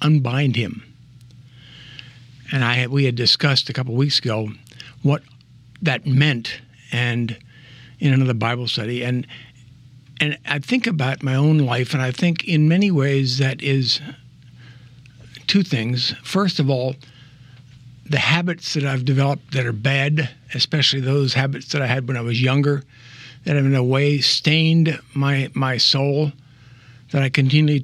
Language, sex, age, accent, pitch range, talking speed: English, male, 60-79, American, 125-150 Hz, 150 wpm